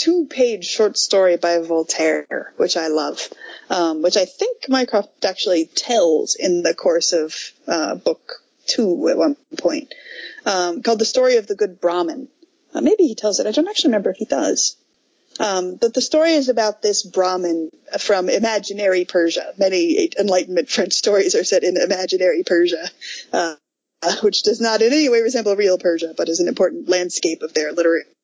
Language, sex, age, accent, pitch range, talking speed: English, female, 30-49, American, 180-300 Hz, 175 wpm